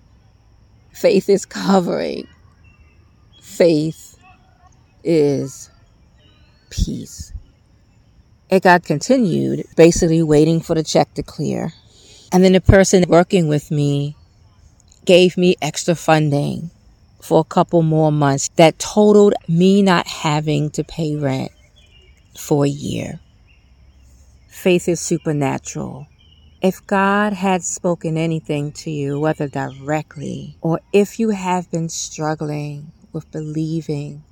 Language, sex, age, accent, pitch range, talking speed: English, female, 40-59, American, 110-175 Hz, 110 wpm